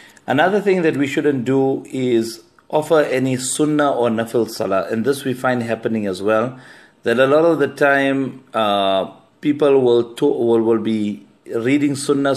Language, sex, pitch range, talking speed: English, male, 110-135 Hz, 165 wpm